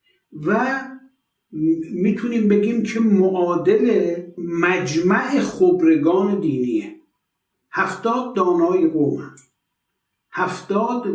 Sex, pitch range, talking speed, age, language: male, 170-235 Hz, 65 wpm, 60-79, Persian